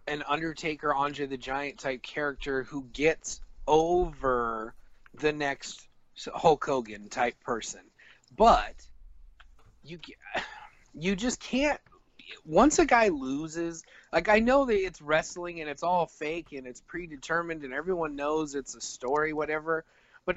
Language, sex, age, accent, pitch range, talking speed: English, male, 30-49, American, 140-185 Hz, 135 wpm